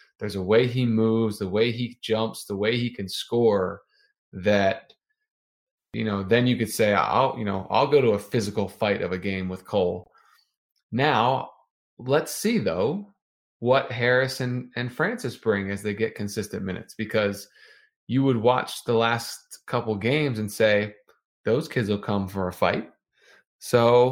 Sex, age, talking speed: male, 20-39, 170 wpm